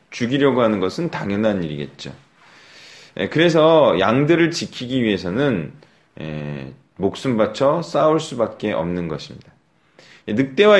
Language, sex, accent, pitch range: Korean, male, native, 100-160 Hz